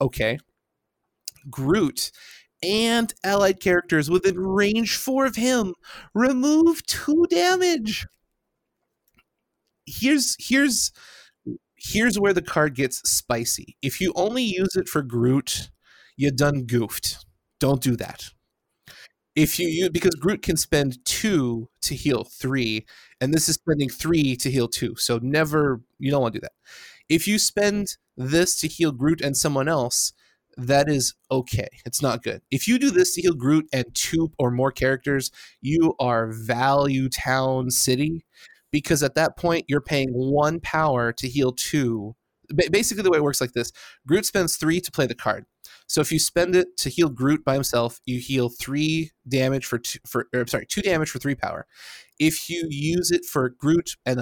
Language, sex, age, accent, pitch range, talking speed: English, male, 30-49, American, 130-180 Hz, 165 wpm